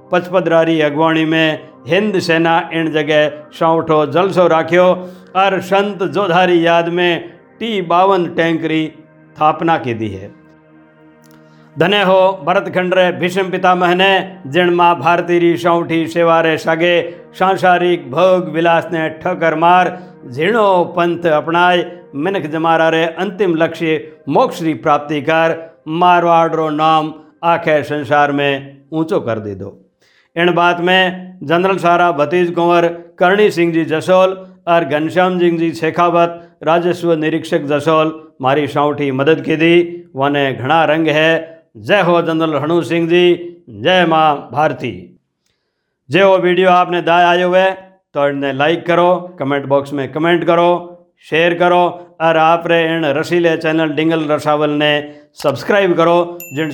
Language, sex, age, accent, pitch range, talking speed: Hindi, male, 60-79, native, 150-175 Hz, 130 wpm